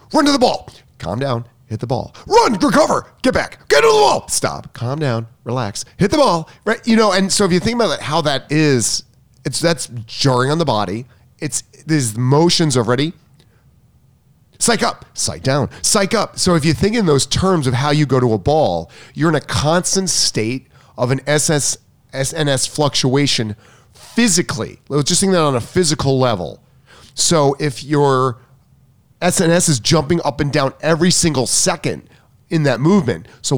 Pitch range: 125-165 Hz